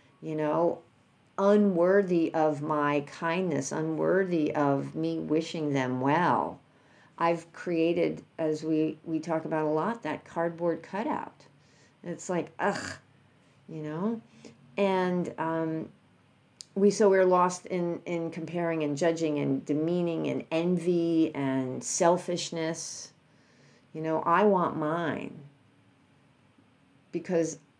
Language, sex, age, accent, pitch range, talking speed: English, female, 50-69, American, 155-190 Hz, 110 wpm